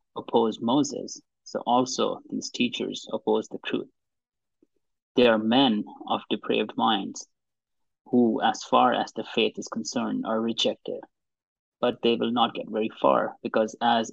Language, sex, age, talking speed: English, male, 30-49, 145 wpm